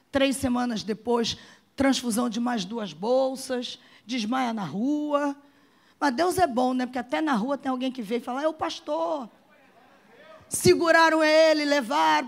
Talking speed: 155 wpm